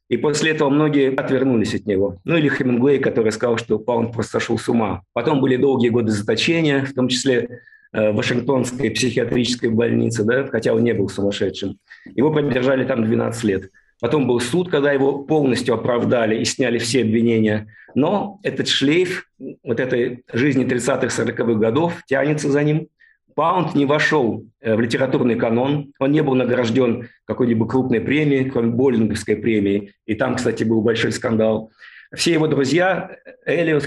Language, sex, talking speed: Russian, male, 160 wpm